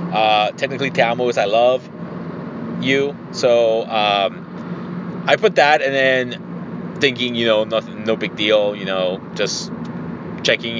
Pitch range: 105-150 Hz